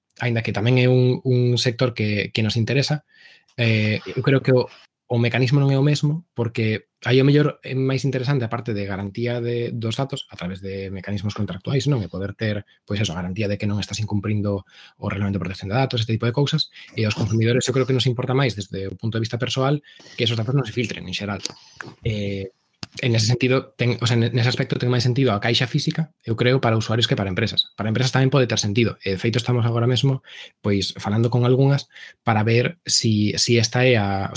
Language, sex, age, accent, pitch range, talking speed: English, male, 20-39, Spanish, 105-130 Hz, 230 wpm